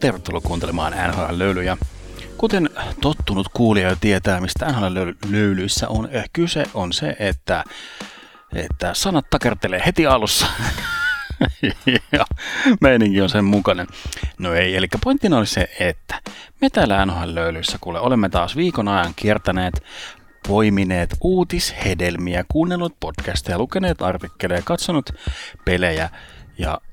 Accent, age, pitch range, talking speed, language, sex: native, 30-49, 90-120 Hz, 105 wpm, Finnish, male